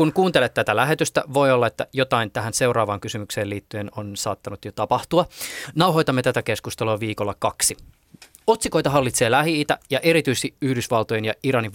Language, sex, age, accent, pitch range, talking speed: Finnish, male, 20-39, native, 105-140 Hz, 150 wpm